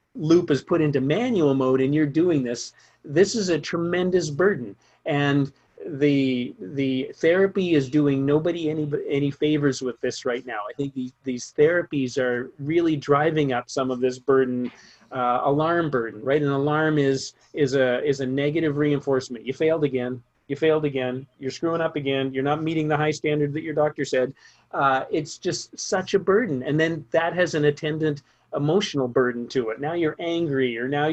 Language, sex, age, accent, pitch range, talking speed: English, male, 40-59, American, 135-160 Hz, 195 wpm